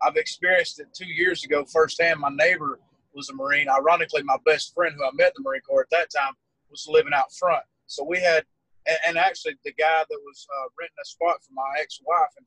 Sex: male